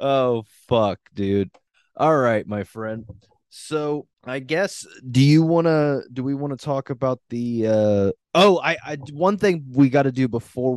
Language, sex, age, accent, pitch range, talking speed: English, male, 20-39, American, 95-125 Hz, 160 wpm